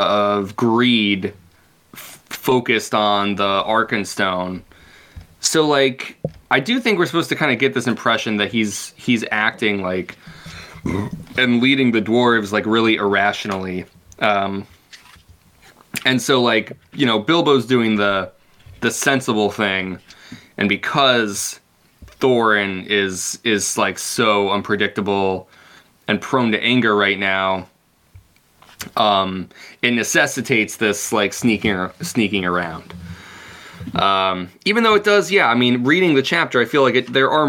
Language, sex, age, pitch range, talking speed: English, male, 20-39, 95-125 Hz, 135 wpm